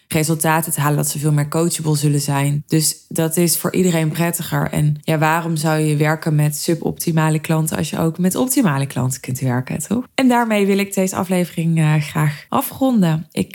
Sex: female